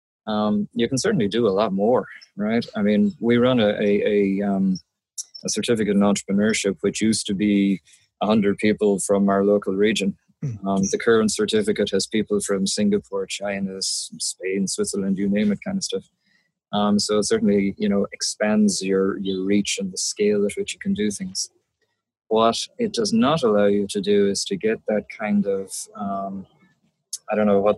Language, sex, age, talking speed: English, male, 20-39, 185 wpm